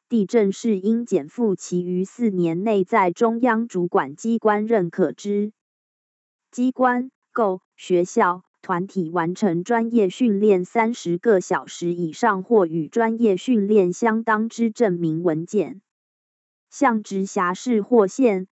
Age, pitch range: 20-39, 180-230 Hz